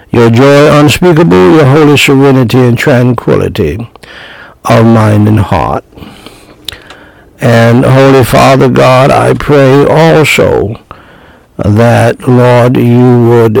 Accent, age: American, 60-79